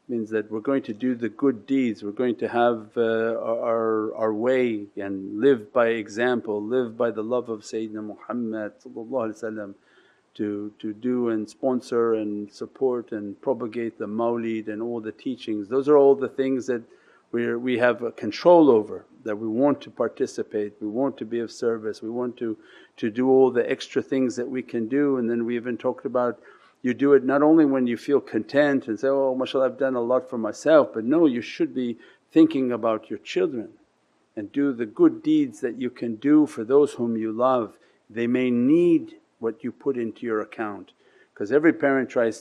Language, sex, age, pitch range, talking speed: English, male, 50-69, 110-140 Hz, 200 wpm